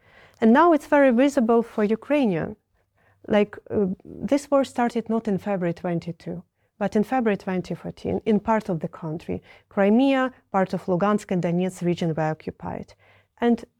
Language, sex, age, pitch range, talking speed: English, female, 30-49, 165-225 Hz, 150 wpm